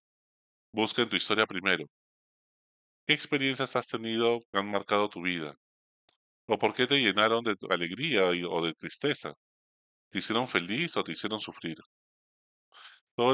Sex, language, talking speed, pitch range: male, Spanish, 145 wpm, 90-115 Hz